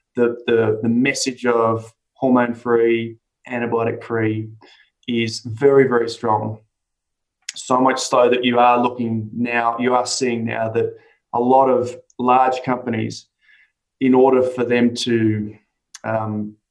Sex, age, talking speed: male, 20-39, 120 wpm